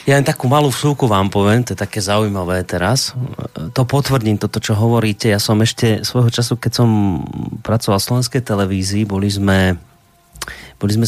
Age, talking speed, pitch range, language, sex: 30-49, 175 wpm, 95-115 Hz, Slovak, male